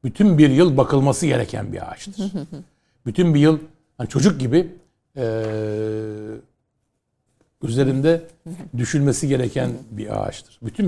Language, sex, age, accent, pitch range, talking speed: Turkish, male, 60-79, native, 115-150 Hz, 110 wpm